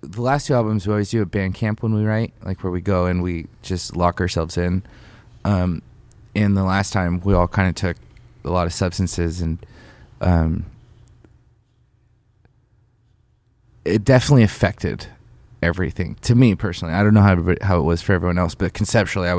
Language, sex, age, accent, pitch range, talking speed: English, male, 20-39, American, 90-115 Hz, 185 wpm